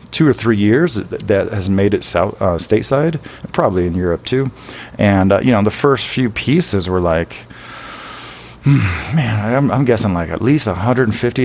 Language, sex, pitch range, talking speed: English, male, 100-130 Hz, 180 wpm